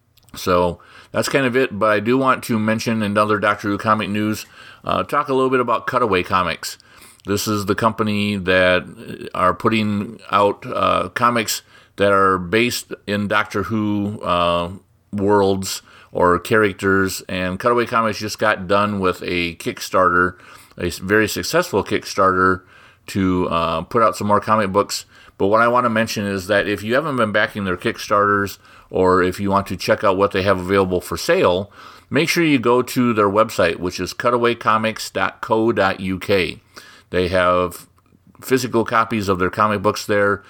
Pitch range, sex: 90-110 Hz, male